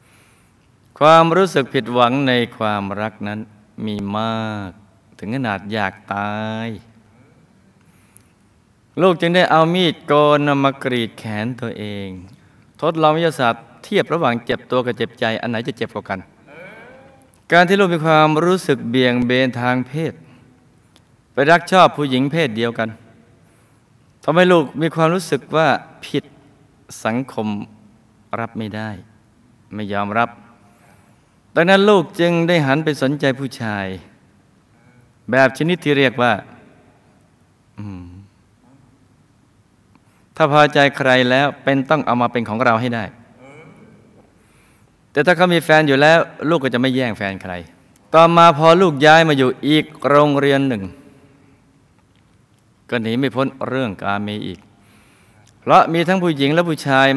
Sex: male